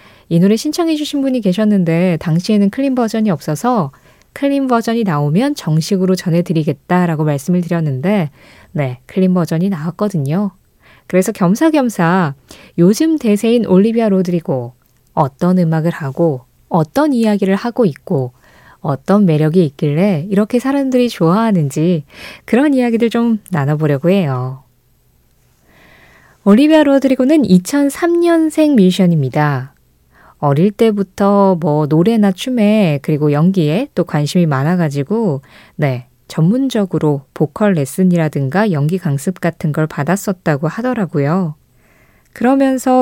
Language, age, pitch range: Korean, 20-39, 155-215 Hz